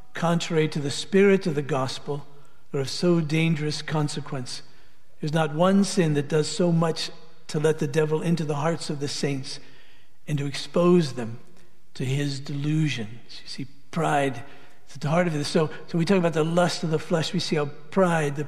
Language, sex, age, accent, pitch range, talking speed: English, male, 60-79, American, 135-160 Hz, 200 wpm